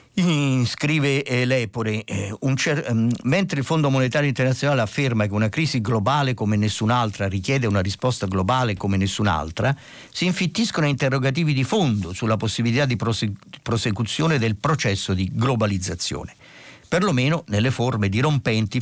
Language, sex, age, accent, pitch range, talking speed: Italian, male, 50-69, native, 105-140 Hz, 130 wpm